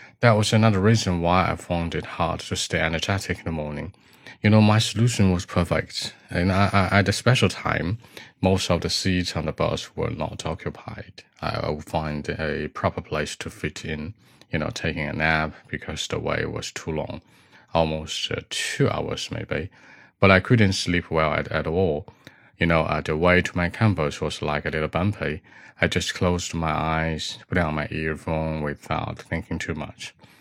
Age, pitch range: 30-49, 80-95 Hz